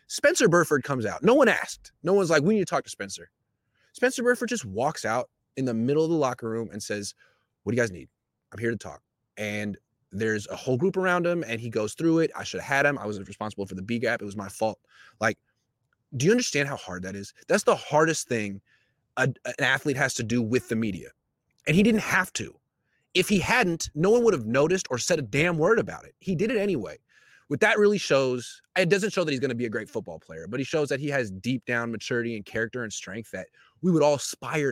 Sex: male